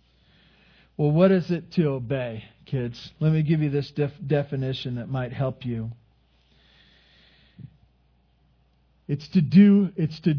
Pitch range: 125-165 Hz